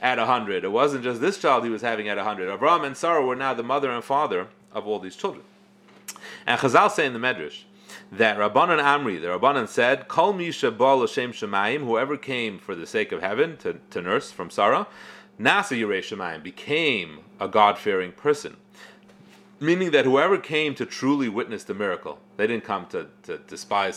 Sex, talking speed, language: male, 180 wpm, English